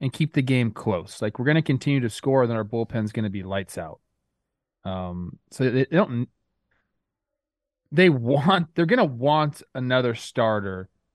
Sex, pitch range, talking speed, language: male, 105-130 Hz, 170 wpm, English